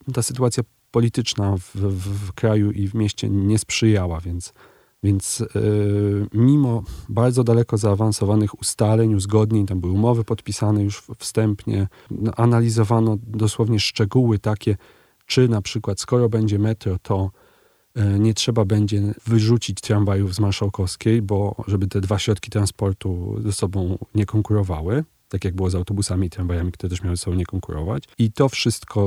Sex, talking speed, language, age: male, 145 wpm, Polish, 30-49